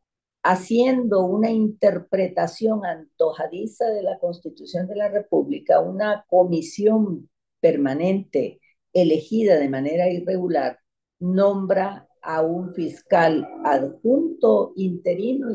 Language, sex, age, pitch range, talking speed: English, female, 50-69, 155-200 Hz, 90 wpm